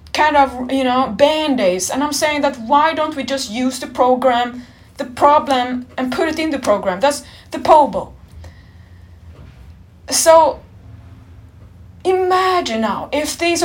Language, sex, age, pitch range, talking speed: English, female, 20-39, 235-315 Hz, 140 wpm